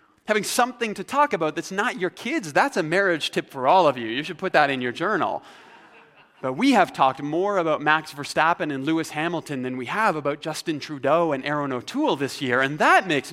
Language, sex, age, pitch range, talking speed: English, male, 30-49, 130-190 Hz, 220 wpm